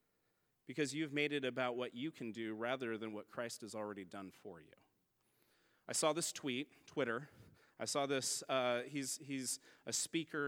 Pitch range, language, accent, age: 125-165 Hz, English, American, 30-49